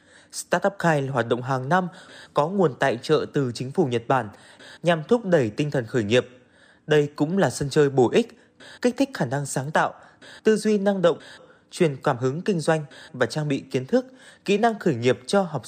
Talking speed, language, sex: 210 wpm, Vietnamese, male